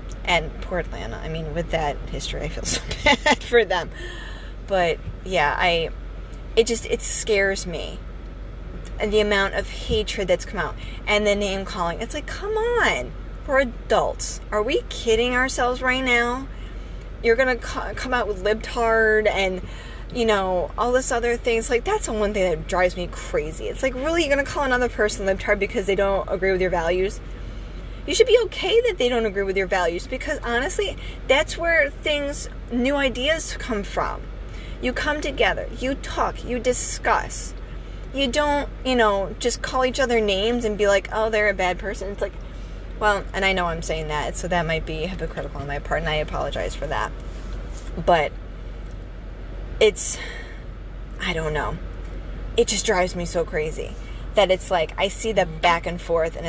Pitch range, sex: 185-255 Hz, female